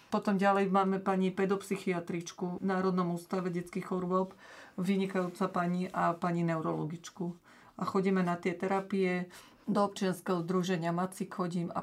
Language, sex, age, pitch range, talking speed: Slovak, female, 40-59, 175-190 Hz, 130 wpm